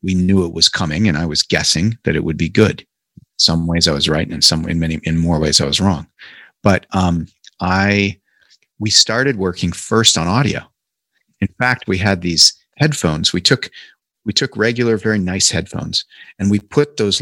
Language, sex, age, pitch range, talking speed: English, male, 40-59, 90-115 Hz, 200 wpm